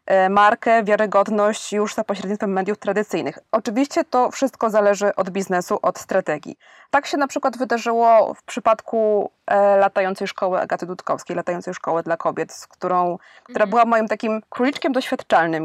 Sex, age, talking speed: female, 20-39, 140 wpm